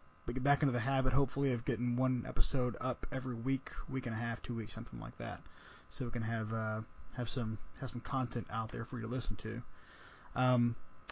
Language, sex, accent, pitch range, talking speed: English, male, American, 115-140 Hz, 220 wpm